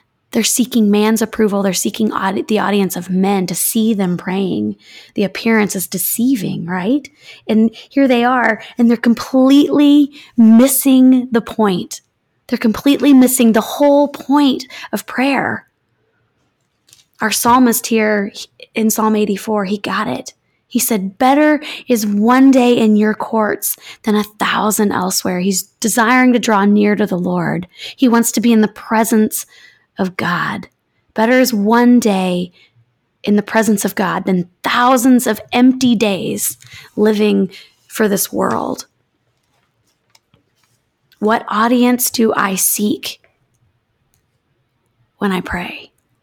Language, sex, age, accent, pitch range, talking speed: English, female, 20-39, American, 185-240 Hz, 135 wpm